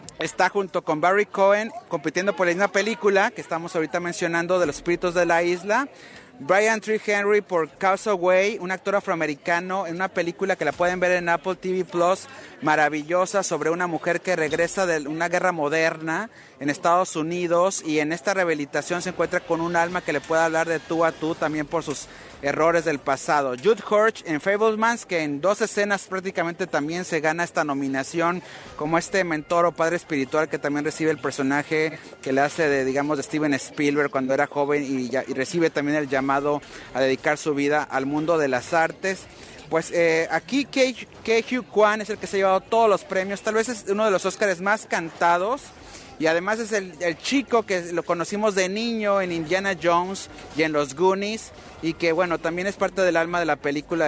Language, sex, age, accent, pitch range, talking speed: Spanish, male, 30-49, Mexican, 155-190 Hz, 200 wpm